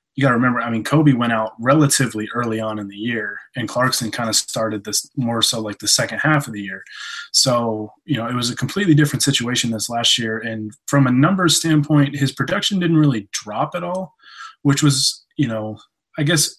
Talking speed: 215 wpm